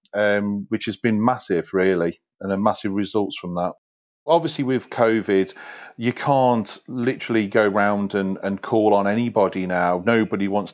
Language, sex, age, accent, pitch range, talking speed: English, male, 40-59, British, 100-120 Hz, 155 wpm